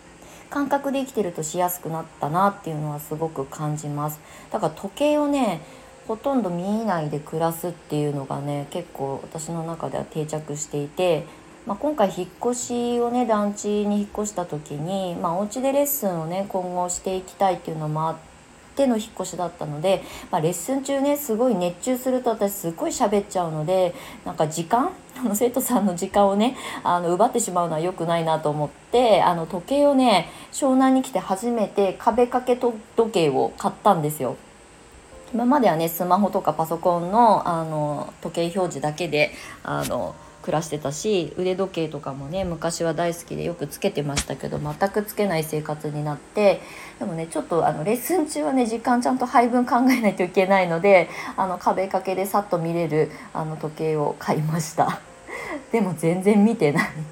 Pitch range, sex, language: 160-230 Hz, female, Japanese